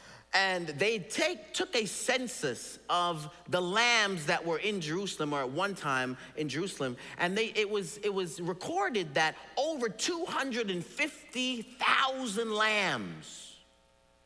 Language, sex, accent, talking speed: English, male, American, 125 wpm